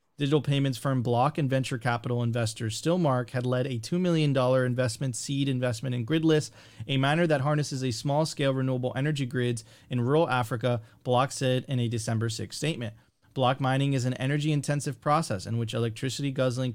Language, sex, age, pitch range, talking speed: English, male, 30-49, 125-145 Hz, 170 wpm